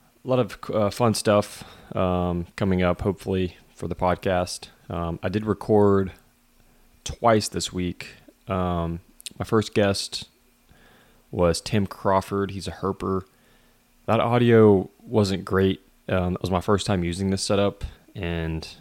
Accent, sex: American, male